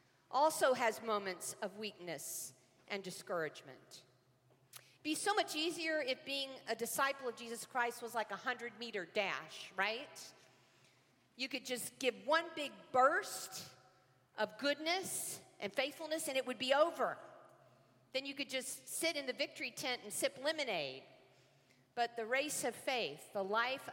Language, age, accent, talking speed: English, 50-69, American, 150 wpm